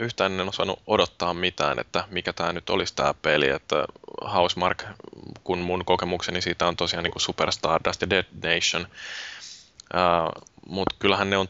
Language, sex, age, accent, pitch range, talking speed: Finnish, male, 20-39, native, 90-100 Hz, 160 wpm